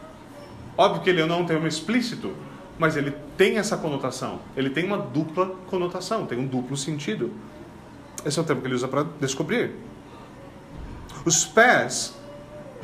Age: 40-59